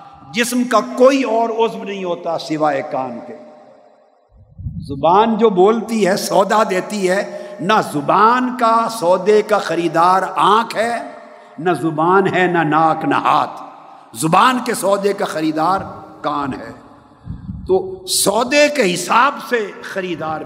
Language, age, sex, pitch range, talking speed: Urdu, 60-79, male, 150-220 Hz, 130 wpm